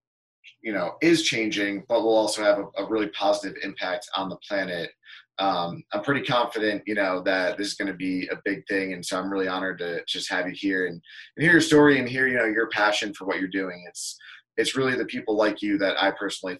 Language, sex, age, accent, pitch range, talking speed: English, male, 30-49, American, 95-115 Hz, 240 wpm